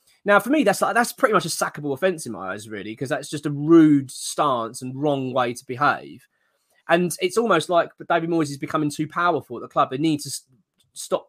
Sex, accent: male, British